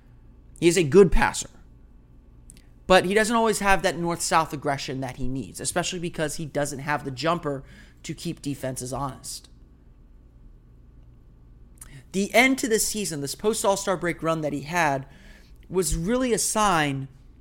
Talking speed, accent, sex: 150 wpm, American, male